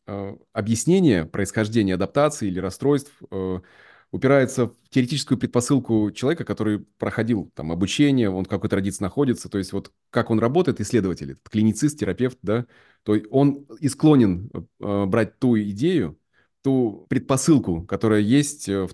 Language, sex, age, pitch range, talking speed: Russian, male, 20-39, 95-120 Hz, 135 wpm